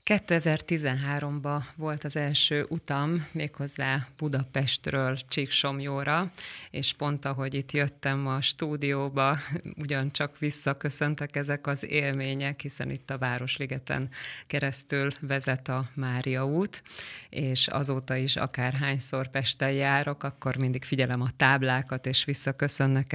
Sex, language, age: female, Hungarian, 30-49